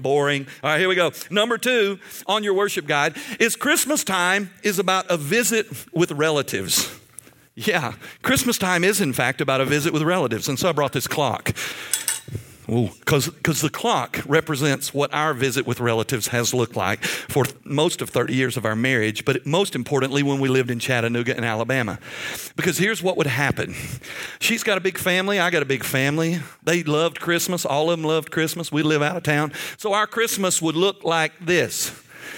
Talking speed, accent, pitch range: 195 wpm, American, 130-175 Hz